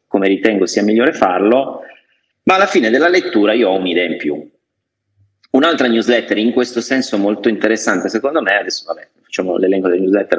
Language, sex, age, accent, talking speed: Italian, male, 30-49, native, 175 wpm